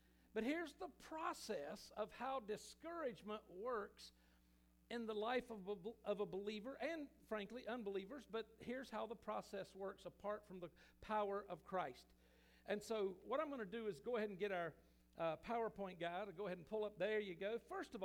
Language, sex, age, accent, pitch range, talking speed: English, male, 50-69, American, 175-225 Hz, 185 wpm